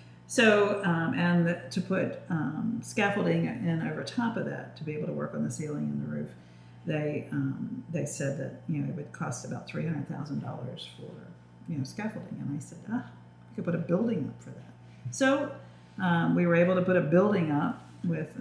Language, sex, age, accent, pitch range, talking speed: English, female, 50-69, American, 125-175 Hz, 215 wpm